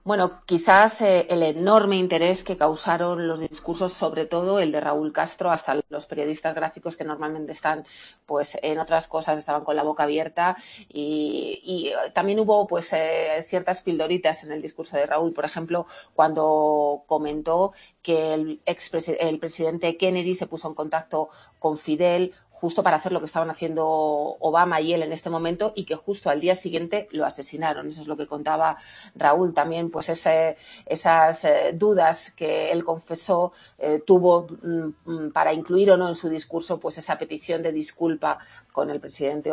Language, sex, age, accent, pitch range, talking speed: Spanish, female, 30-49, Spanish, 155-180 Hz, 170 wpm